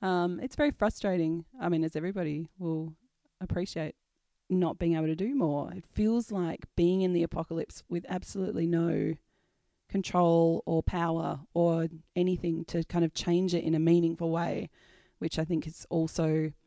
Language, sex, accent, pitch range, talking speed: English, female, Australian, 155-175 Hz, 160 wpm